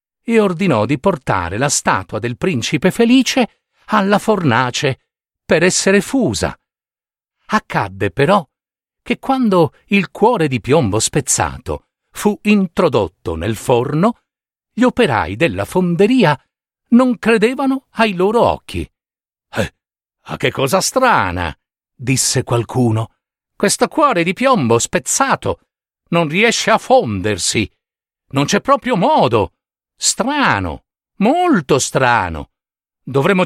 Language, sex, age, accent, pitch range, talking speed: Italian, male, 50-69, native, 135-205 Hz, 110 wpm